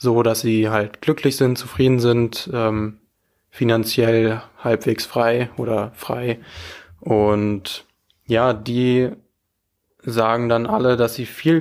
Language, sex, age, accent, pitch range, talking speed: German, male, 20-39, German, 110-125 Hz, 120 wpm